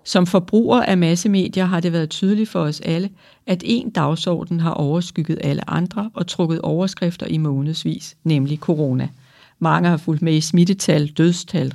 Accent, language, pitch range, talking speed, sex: native, Danish, 160-195 Hz, 165 wpm, female